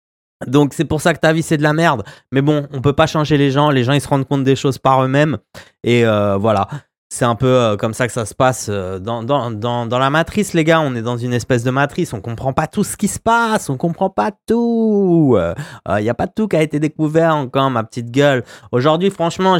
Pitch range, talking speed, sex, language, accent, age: 120-155 Hz, 270 wpm, male, French, French, 20-39